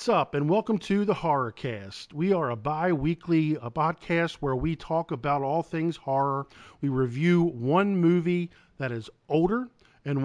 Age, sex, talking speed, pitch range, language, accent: 40-59, male, 165 wpm, 130-160 Hz, English, American